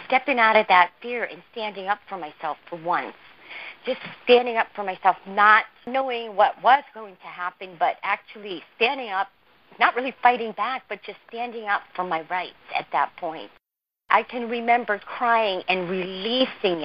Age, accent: 40-59, American